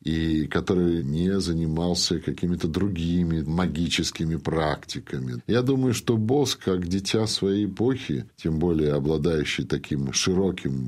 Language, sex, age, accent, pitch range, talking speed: Russian, male, 50-69, native, 80-110 Hz, 115 wpm